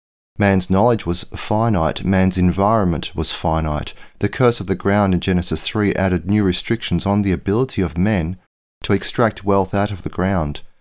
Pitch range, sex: 85-105 Hz, male